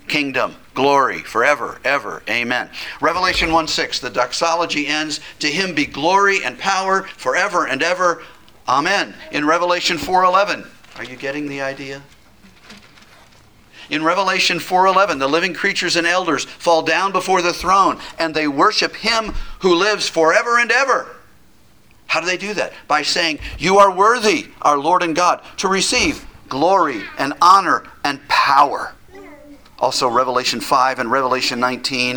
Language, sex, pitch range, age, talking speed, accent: English, male, 130-180 Hz, 50-69, 150 wpm, American